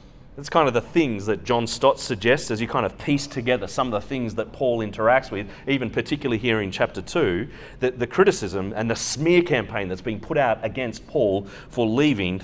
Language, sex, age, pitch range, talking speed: English, male, 30-49, 115-155 Hz, 205 wpm